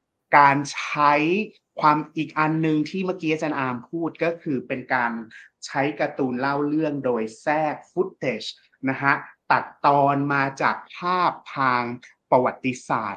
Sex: male